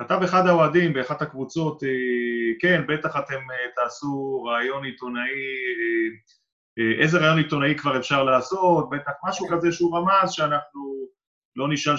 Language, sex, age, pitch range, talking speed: Hebrew, male, 30-49, 130-175 Hz, 125 wpm